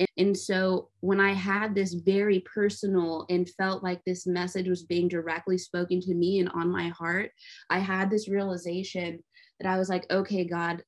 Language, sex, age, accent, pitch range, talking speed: English, female, 20-39, American, 175-195 Hz, 180 wpm